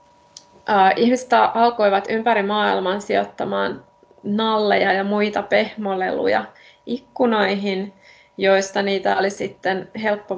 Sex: female